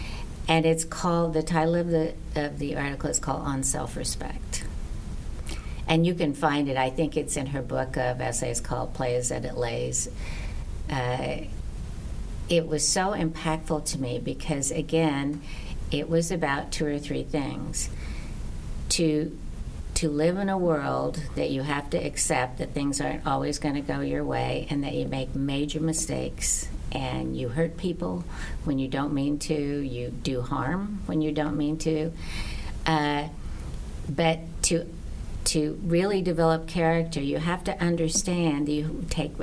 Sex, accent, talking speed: female, American, 160 wpm